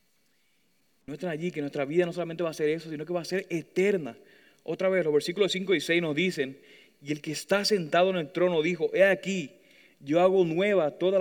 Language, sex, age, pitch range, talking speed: Spanish, male, 30-49, 140-185 Hz, 225 wpm